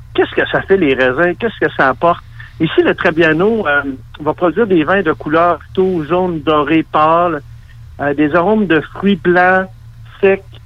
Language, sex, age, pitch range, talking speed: French, male, 60-79, 140-185 Hz, 175 wpm